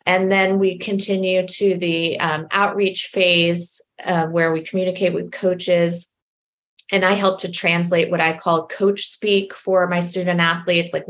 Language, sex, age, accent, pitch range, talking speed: English, female, 20-39, American, 165-190 Hz, 160 wpm